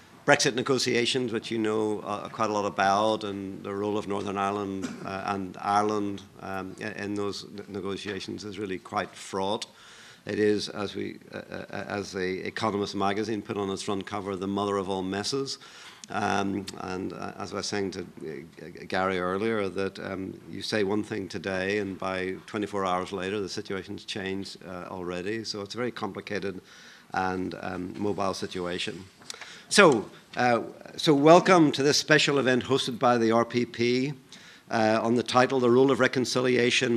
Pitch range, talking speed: 100-120 Hz, 165 wpm